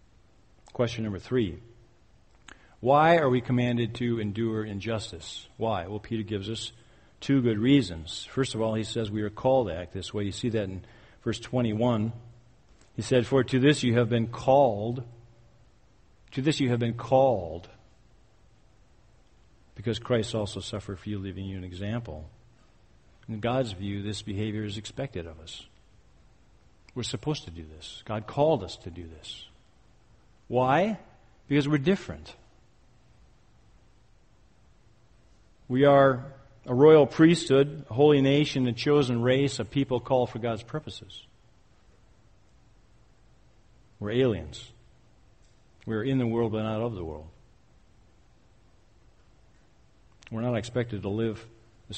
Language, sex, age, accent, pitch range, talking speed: English, male, 50-69, American, 105-125 Hz, 140 wpm